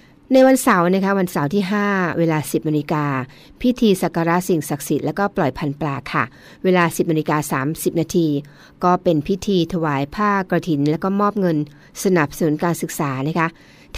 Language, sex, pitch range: Thai, female, 155-195 Hz